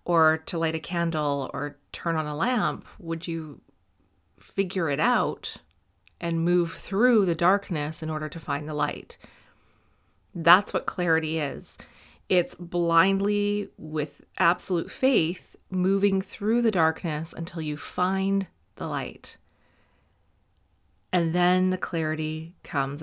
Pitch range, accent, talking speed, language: 150-195 Hz, American, 130 wpm, English